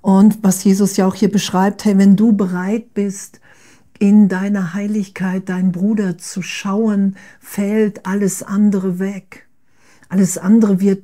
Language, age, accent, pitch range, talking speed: German, 50-69, German, 185-205 Hz, 140 wpm